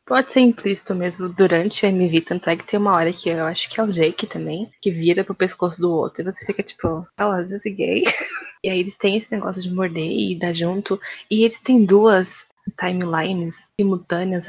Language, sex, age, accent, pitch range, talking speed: Portuguese, female, 20-39, Brazilian, 180-215 Hz, 215 wpm